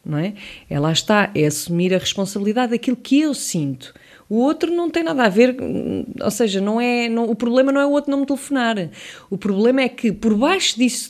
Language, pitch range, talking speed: English, 165-230 Hz, 215 wpm